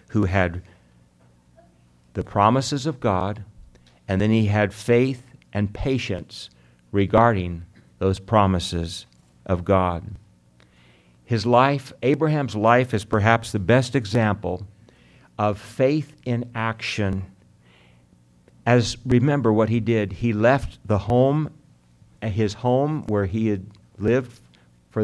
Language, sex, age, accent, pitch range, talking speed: English, male, 60-79, American, 95-120 Hz, 115 wpm